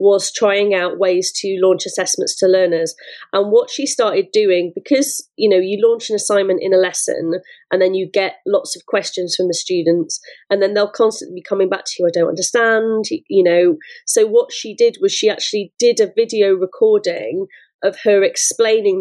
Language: English